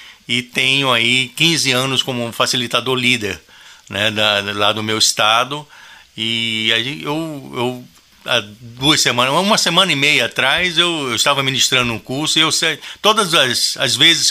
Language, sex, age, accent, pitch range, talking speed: Portuguese, male, 60-79, Brazilian, 115-140 Hz, 140 wpm